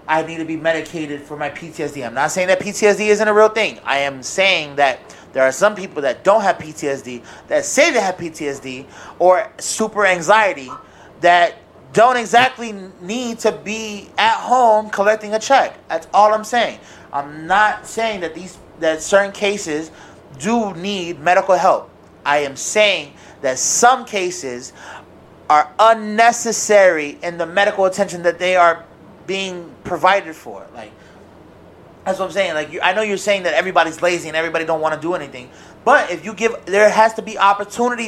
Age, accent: 30-49, American